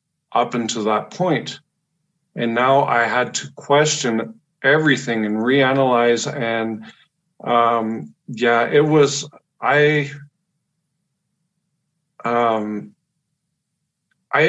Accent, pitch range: American, 115-155 Hz